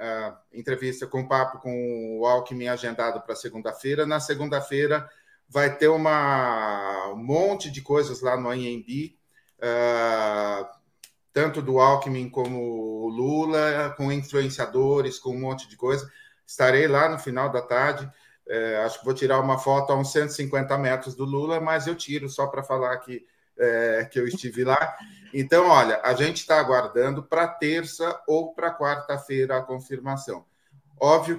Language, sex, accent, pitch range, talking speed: Portuguese, male, Brazilian, 120-145 Hz, 160 wpm